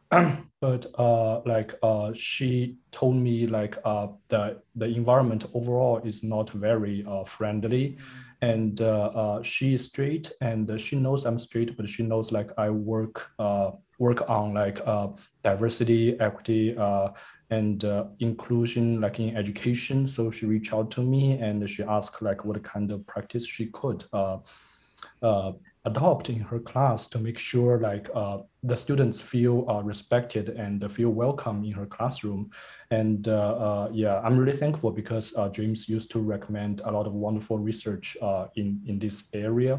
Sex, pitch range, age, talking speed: male, 105-120 Hz, 20-39, 165 wpm